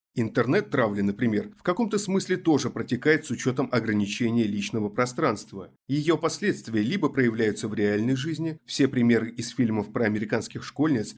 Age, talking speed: 30-49, 140 wpm